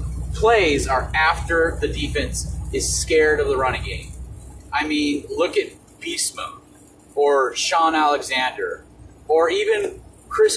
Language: English